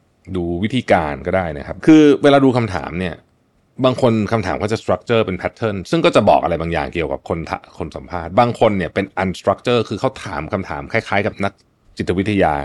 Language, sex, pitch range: Thai, male, 90-125 Hz